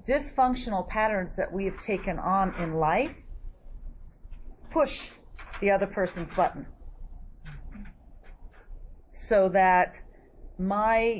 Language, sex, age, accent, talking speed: English, female, 40-59, American, 90 wpm